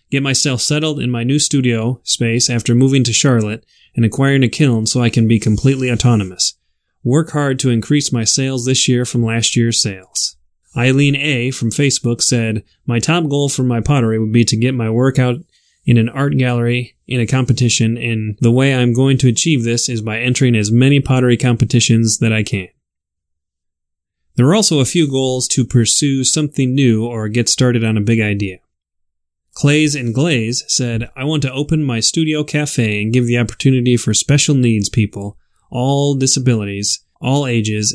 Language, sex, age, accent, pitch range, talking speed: English, male, 20-39, American, 110-135 Hz, 185 wpm